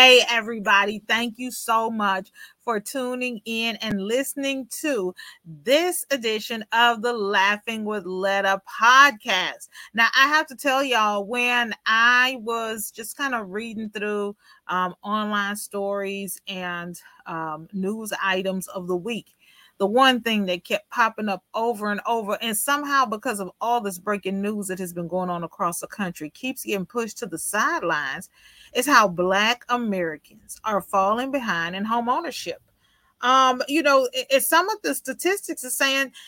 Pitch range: 200-275 Hz